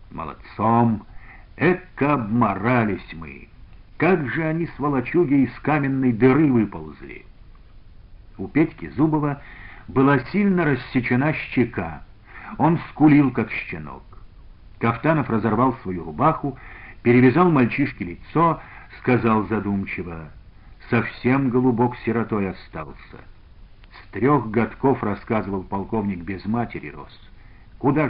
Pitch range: 100-135 Hz